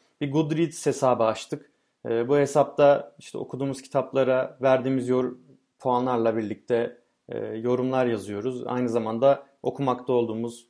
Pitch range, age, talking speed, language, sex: 120-140 Hz, 30-49, 100 wpm, Turkish, male